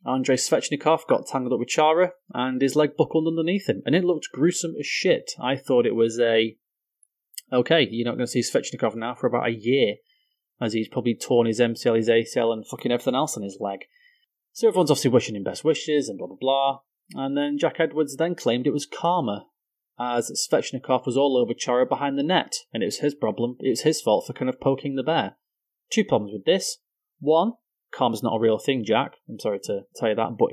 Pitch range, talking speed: 120-165 Hz, 220 wpm